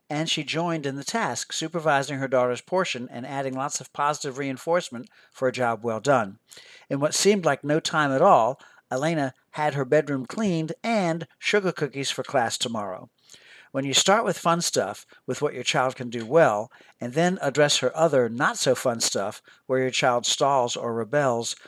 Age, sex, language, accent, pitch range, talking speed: 60-79, male, English, American, 125-160 Hz, 185 wpm